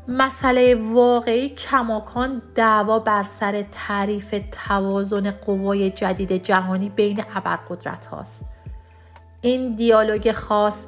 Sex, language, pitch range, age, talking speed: female, Persian, 185-220 Hz, 40-59, 95 wpm